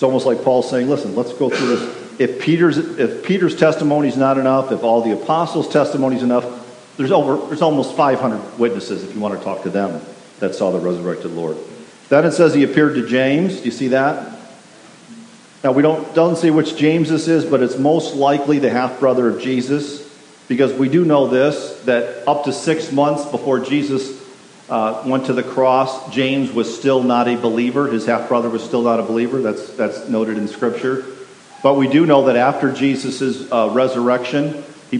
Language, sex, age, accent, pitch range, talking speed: English, male, 50-69, American, 120-145 Hz, 200 wpm